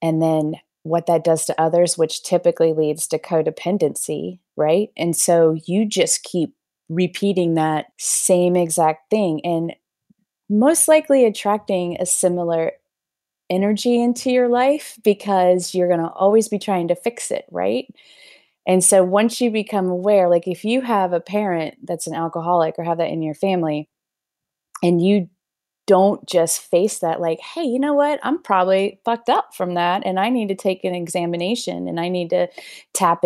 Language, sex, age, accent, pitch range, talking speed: English, female, 20-39, American, 165-200 Hz, 170 wpm